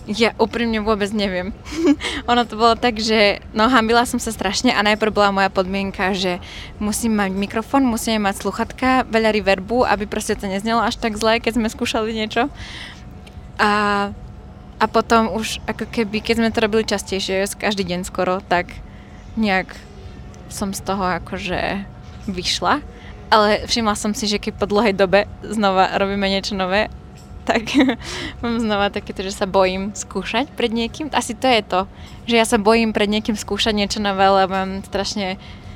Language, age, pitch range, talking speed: Slovak, 20-39, 190-225 Hz, 165 wpm